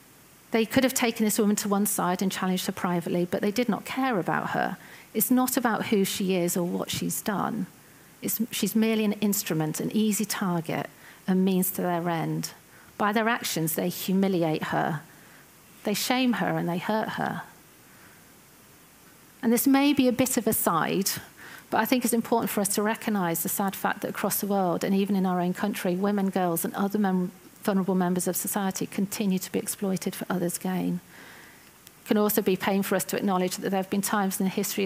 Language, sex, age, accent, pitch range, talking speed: English, female, 40-59, British, 185-220 Hz, 205 wpm